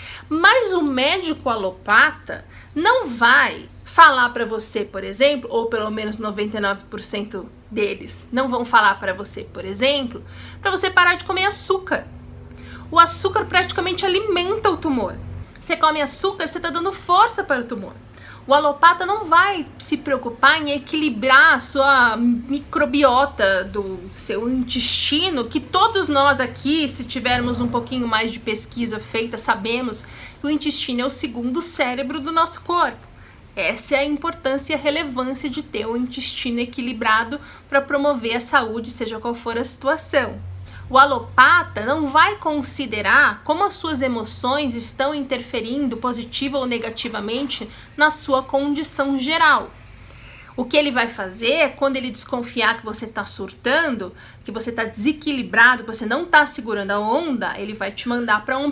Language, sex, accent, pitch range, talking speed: Portuguese, female, Brazilian, 230-305 Hz, 150 wpm